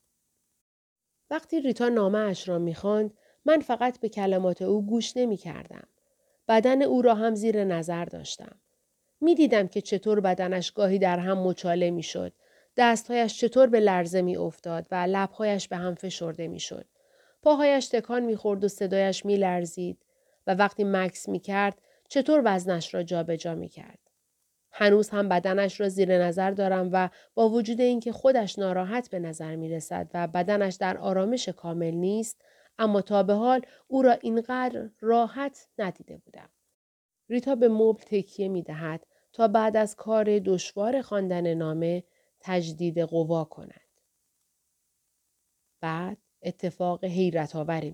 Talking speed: 145 wpm